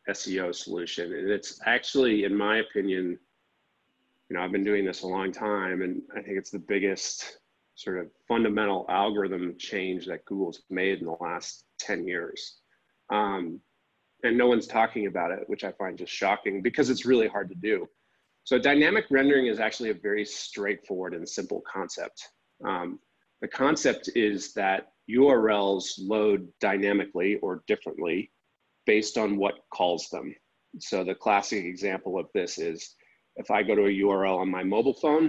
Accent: American